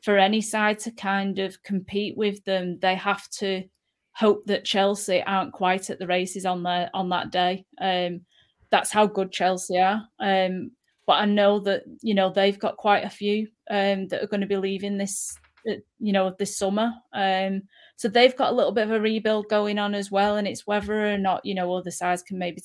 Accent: British